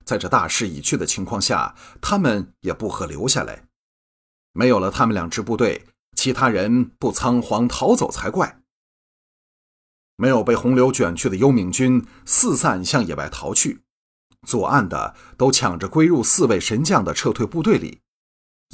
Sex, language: male, Chinese